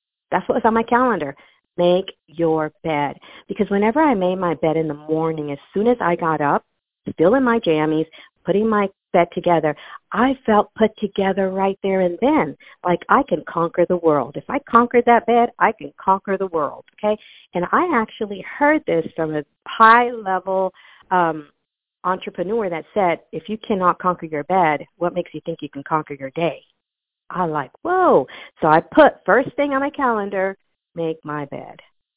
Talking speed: 180 wpm